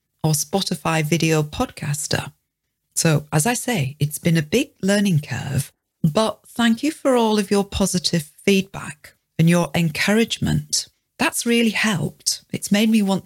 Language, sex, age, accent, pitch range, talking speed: English, female, 40-59, British, 160-210 Hz, 150 wpm